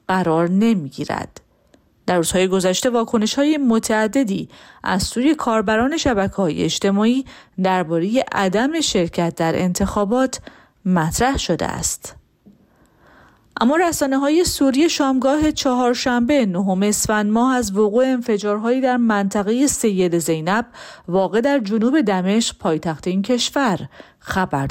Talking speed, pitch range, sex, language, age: 100 wpm, 185-245 Hz, female, Persian, 40-59